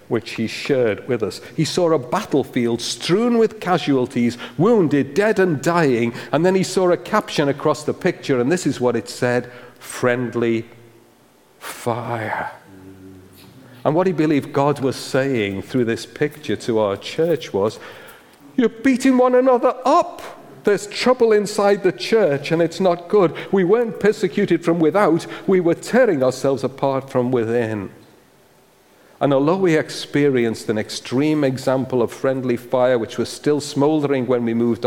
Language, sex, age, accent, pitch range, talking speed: English, male, 50-69, British, 115-170 Hz, 155 wpm